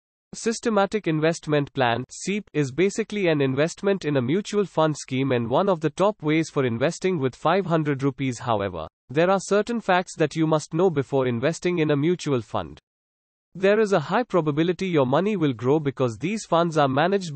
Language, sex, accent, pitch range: English, male, Indian, 135-185 Hz